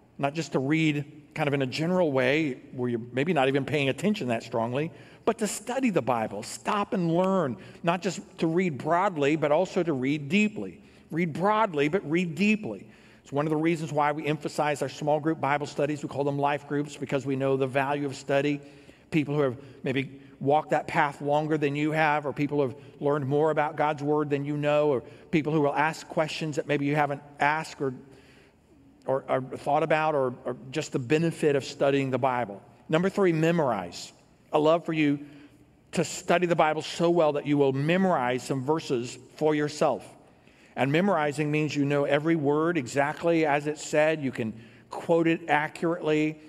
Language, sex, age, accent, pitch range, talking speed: English, male, 50-69, American, 135-160 Hz, 195 wpm